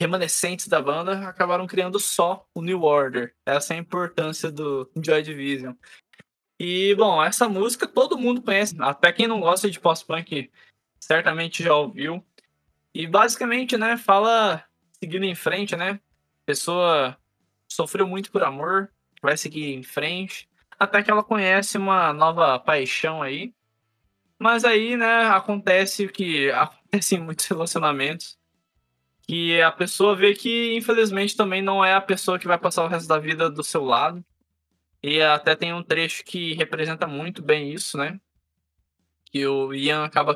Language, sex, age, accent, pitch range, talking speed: Portuguese, male, 20-39, Brazilian, 145-195 Hz, 155 wpm